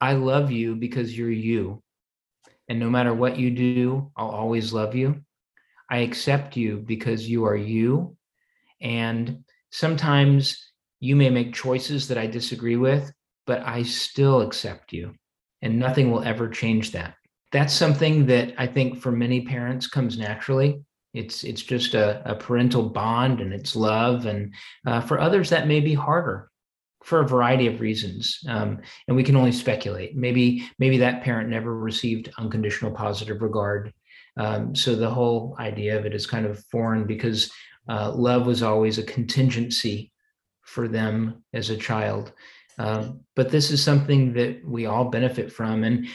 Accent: American